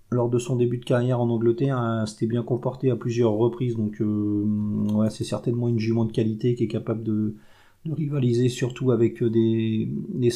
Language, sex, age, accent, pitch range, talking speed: French, male, 40-59, French, 115-130 Hz, 190 wpm